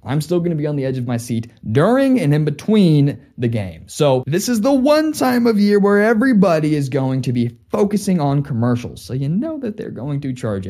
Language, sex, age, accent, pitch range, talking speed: English, male, 20-39, American, 115-195 Hz, 235 wpm